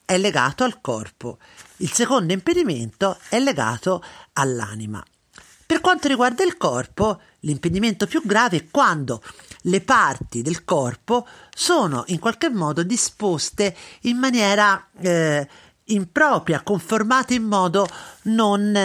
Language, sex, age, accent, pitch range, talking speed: Italian, male, 40-59, native, 145-230 Hz, 115 wpm